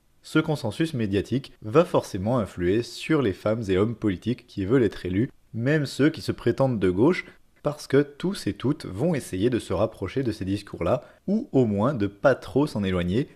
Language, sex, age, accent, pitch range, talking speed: French, male, 30-49, French, 100-150 Hz, 200 wpm